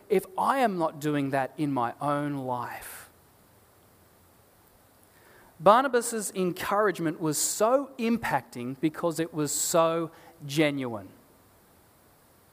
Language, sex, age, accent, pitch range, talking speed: English, male, 30-49, Australian, 120-185 Hz, 95 wpm